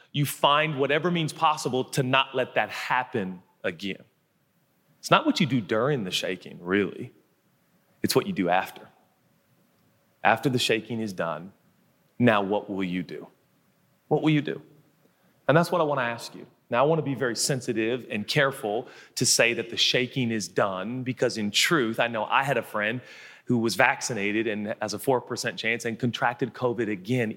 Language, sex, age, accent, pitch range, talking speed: English, male, 30-49, American, 110-140 Hz, 180 wpm